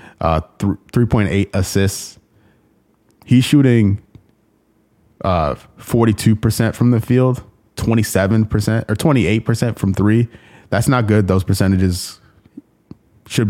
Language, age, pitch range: English, 20-39, 95-120 Hz